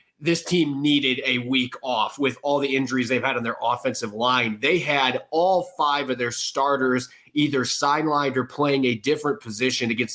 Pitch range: 120-140 Hz